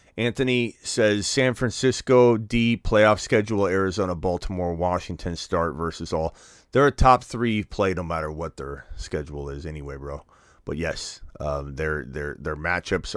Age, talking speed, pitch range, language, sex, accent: 30-49, 150 wpm, 80-105 Hz, English, male, American